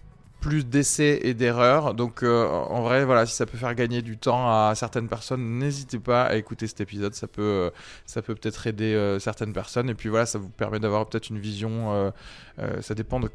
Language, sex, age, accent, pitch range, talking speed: French, male, 20-39, French, 105-125 Hz, 220 wpm